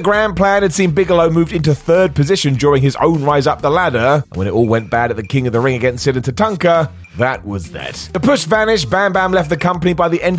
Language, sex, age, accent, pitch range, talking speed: English, male, 30-49, British, 115-165 Hz, 265 wpm